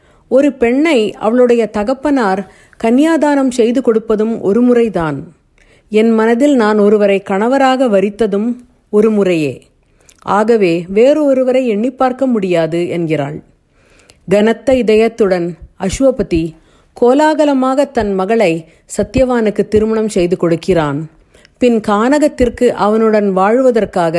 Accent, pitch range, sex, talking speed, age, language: native, 190-250 Hz, female, 90 wpm, 50-69, Tamil